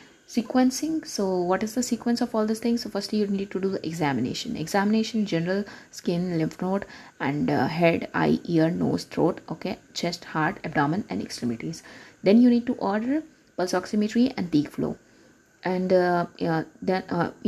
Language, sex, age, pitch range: English, female, 20-39, 175-230 Hz